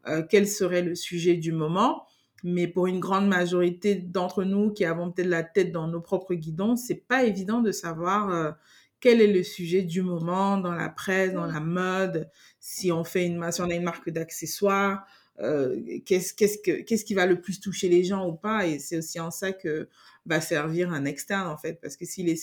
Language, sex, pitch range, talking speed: French, female, 165-200 Hz, 220 wpm